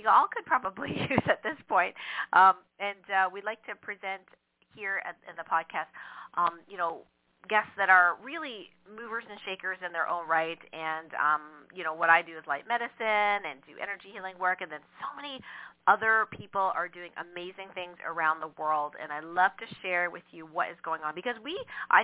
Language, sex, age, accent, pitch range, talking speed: English, female, 40-59, American, 165-200 Hz, 210 wpm